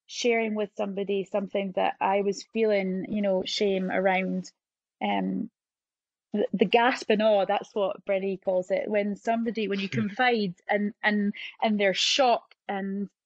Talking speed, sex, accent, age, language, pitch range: 155 wpm, female, British, 20-39, English, 195-240 Hz